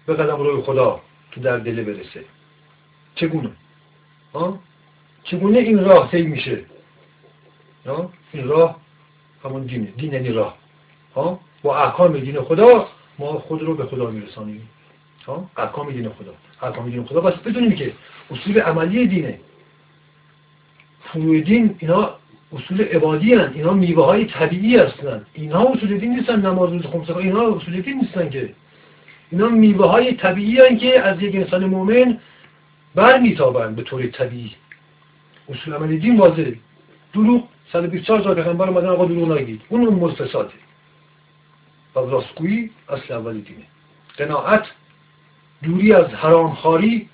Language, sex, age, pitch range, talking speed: Persian, male, 60-79, 150-195 Hz, 135 wpm